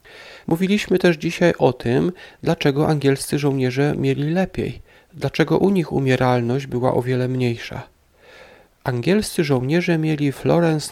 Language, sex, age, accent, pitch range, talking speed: Polish, male, 40-59, native, 125-170 Hz, 120 wpm